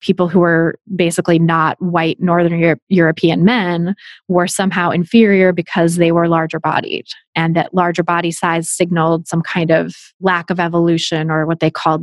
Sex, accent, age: female, American, 20-39